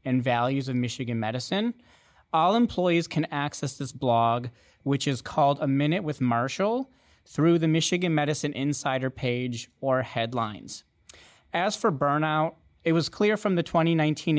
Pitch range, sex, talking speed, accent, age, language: 125-155 Hz, male, 145 wpm, American, 30-49, English